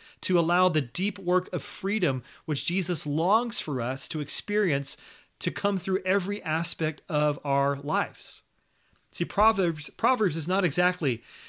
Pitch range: 145-175 Hz